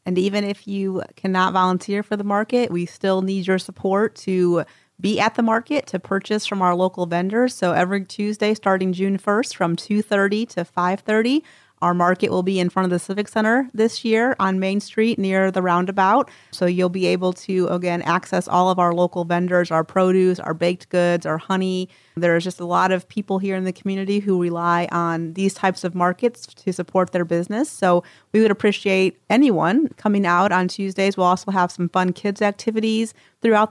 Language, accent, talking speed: English, American, 195 wpm